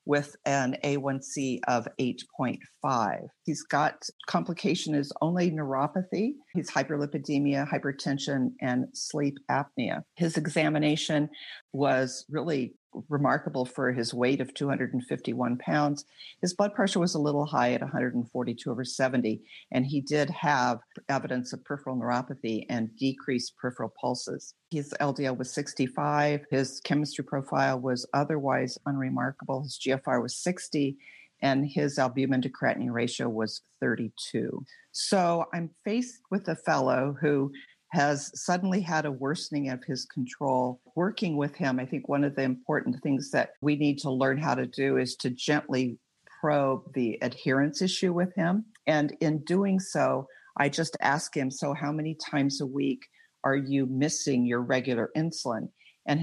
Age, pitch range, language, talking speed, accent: 50-69, 130-155 Hz, English, 145 wpm, American